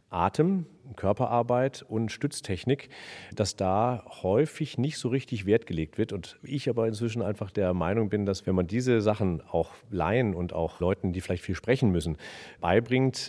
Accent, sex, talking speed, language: German, male, 165 wpm, German